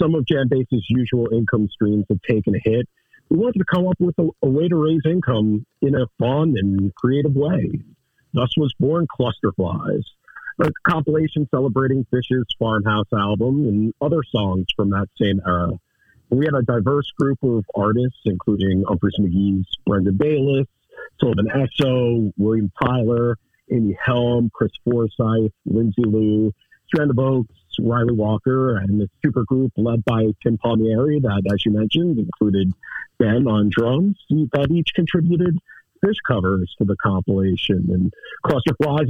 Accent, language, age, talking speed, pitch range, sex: American, English, 50-69, 150 wpm, 105-140 Hz, male